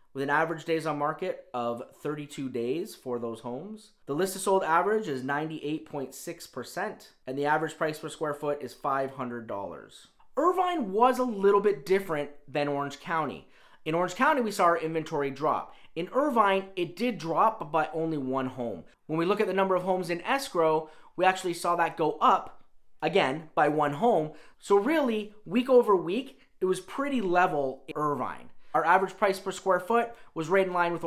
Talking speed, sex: 185 wpm, male